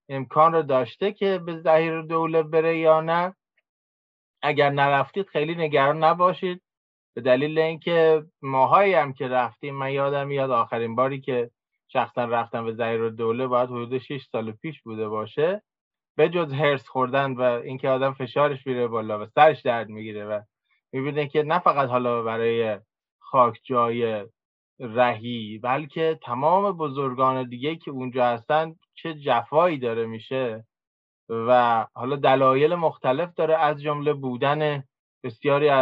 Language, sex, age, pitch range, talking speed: Persian, male, 20-39, 120-155 Hz, 140 wpm